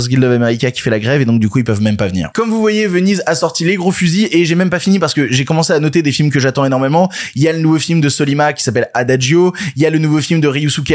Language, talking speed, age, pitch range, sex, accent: French, 330 wpm, 20-39, 140-185 Hz, male, French